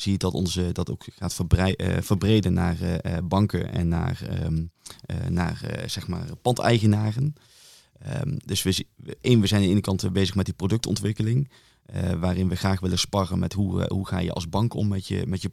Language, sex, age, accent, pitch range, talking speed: Dutch, male, 20-39, Dutch, 90-105 Hz, 220 wpm